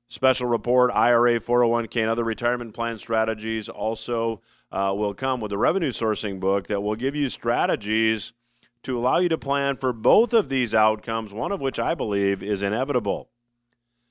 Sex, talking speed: male, 170 wpm